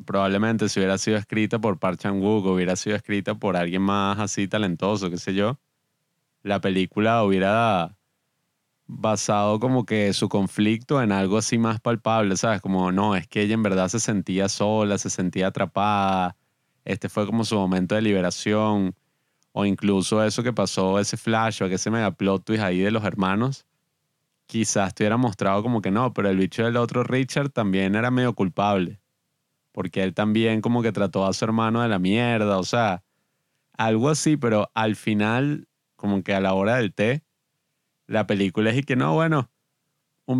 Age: 20-39